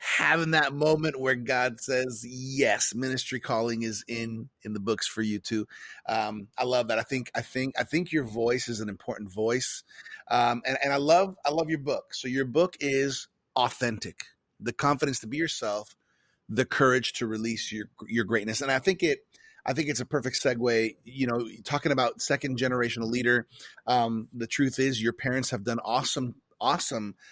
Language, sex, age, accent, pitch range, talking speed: English, male, 30-49, American, 115-145 Hz, 190 wpm